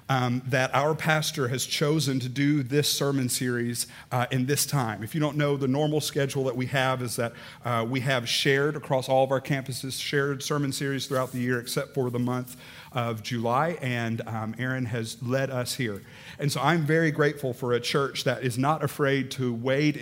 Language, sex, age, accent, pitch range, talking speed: English, male, 50-69, American, 125-145 Hz, 205 wpm